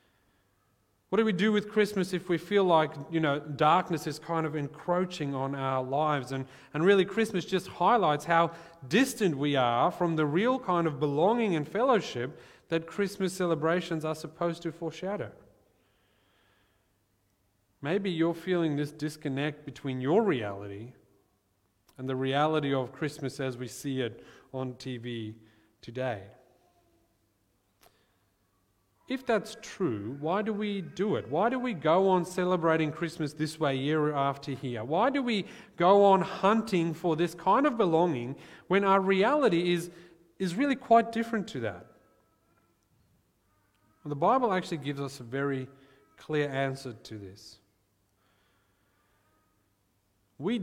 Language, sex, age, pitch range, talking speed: English, male, 30-49, 110-175 Hz, 140 wpm